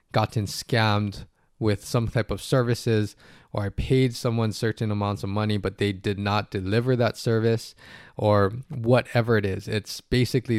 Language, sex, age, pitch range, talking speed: English, male, 20-39, 105-130 Hz, 160 wpm